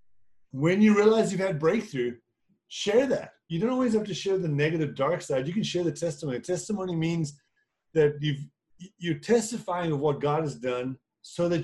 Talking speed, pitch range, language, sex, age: 180 wpm, 135-170 Hz, English, male, 30-49